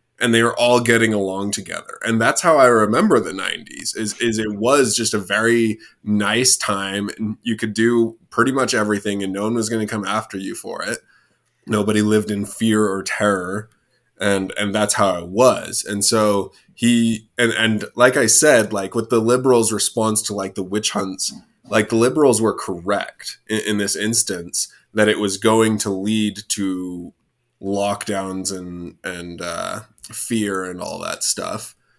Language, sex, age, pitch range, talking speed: English, male, 20-39, 100-115 Hz, 180 wpm